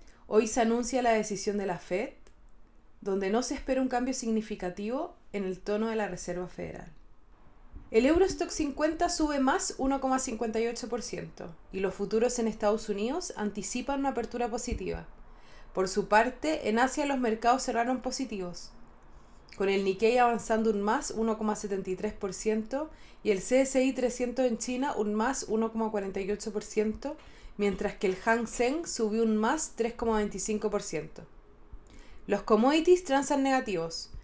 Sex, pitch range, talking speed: female, 205-250 Hz, 135 wpm